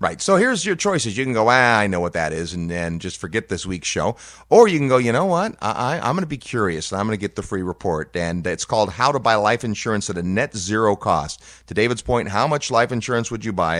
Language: English